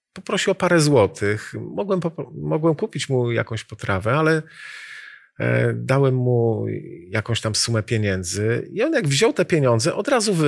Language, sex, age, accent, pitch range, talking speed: Polish, male, 40-59, native, 110-145 Hz, 145 wpm